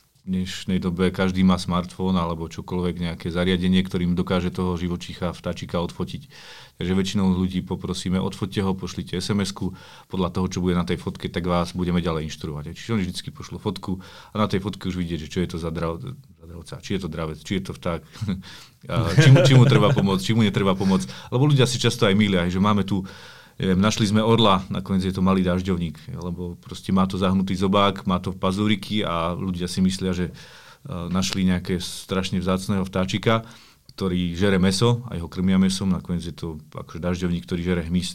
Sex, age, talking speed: male, 40-59, 200 wpm